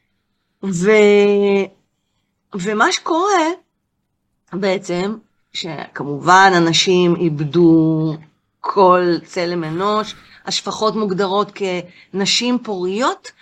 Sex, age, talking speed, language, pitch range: female, 30-49, 65 wpm, Hebrew, 175-235 Hz